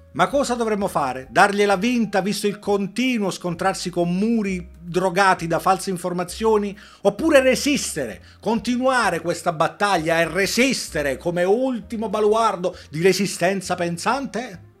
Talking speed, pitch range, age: 120 wpm, 150-205 Hz, 40-59